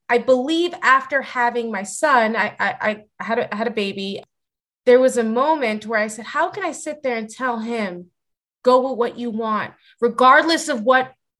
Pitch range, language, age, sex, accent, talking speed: 210-250 Hz, English, 20-39, female, American, 200 wpm